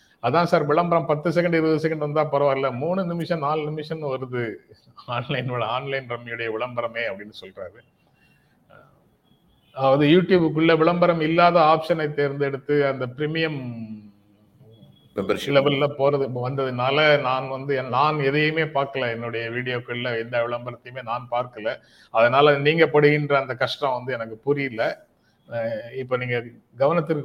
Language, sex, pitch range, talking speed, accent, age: Tamil, male, 120-155 Hz, 110 wpm, native, 30-49